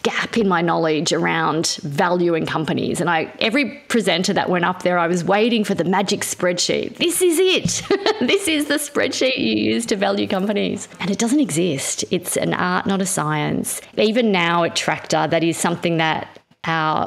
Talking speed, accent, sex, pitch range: 185 wpm, Australian, female, 160-200 Hz